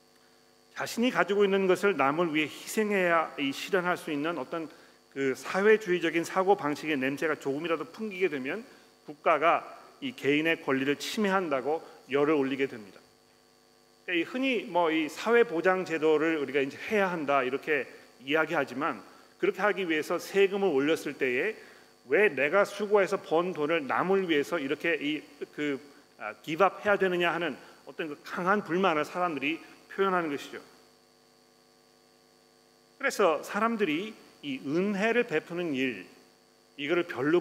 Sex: male